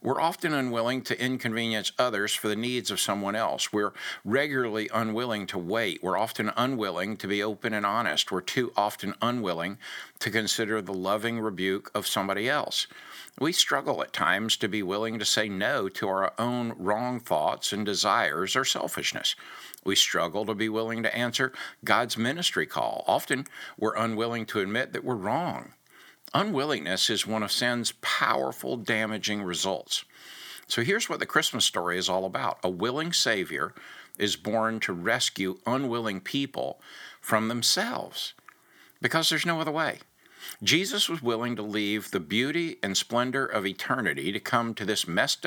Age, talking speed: 60-79, 160 wpm